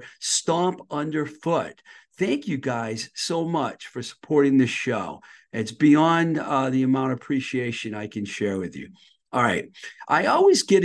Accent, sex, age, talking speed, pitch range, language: American, male, 50-69, 155 wpm, 115-155 Hz, English